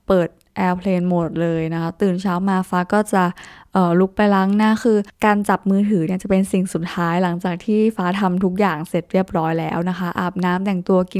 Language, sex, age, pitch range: Thai, female, 20-39, 180-210 Hz